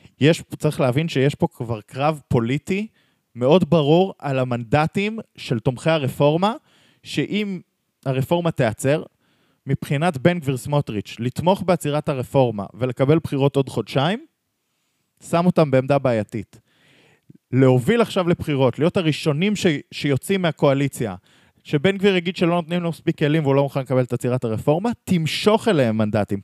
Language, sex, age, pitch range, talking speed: Hebrew, male, 20-39, 125-170 Hz, 130 wpm